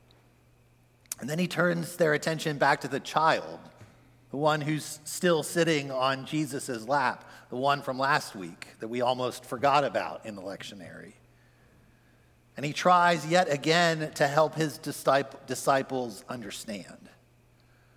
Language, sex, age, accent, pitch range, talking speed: English, male, 50-69, American, 120-150 Hz, 135 wpm